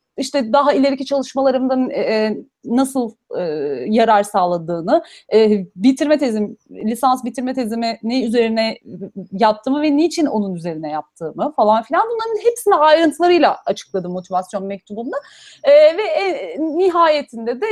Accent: native